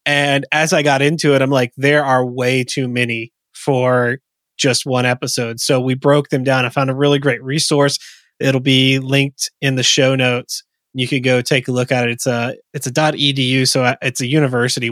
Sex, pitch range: male, 130-160 Hz